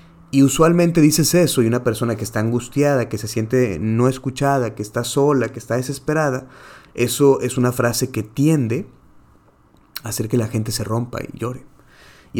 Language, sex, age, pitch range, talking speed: Spanish, male, 30-49, 110-135 Hz, 180 wpm